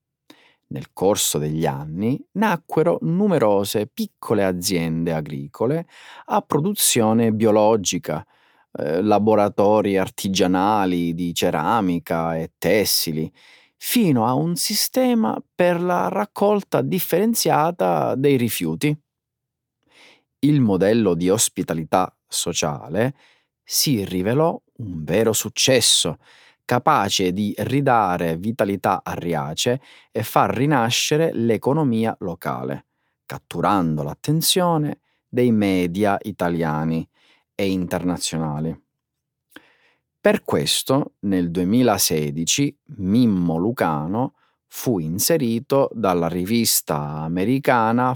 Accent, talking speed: native, 85 wpm